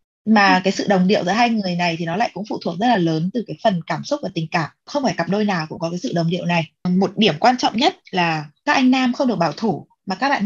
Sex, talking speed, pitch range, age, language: female, 310 wpm, 175-250 Hz, 20-39, Vietnamese